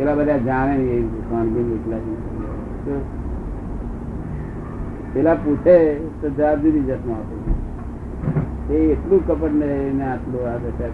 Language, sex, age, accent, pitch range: Gujarati, male, 60-79, native, 115-160 Hz